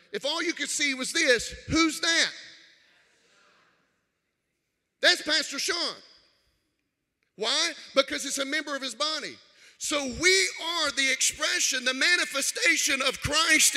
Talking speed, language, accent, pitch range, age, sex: 125 wpm, English, American, 190-285 Hz, 40-59, male